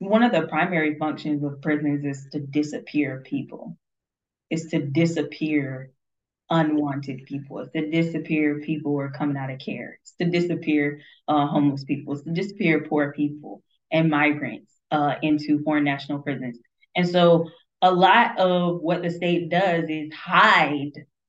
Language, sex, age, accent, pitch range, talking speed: English, female, 20-39, American, 150-175 Hz, 155 wpm